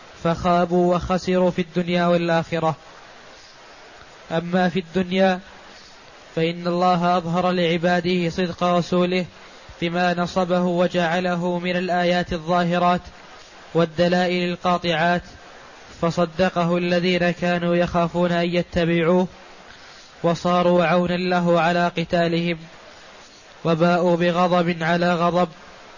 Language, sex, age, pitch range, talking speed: Arabic, male, 20-39, 175-180 Hz, 85 wpm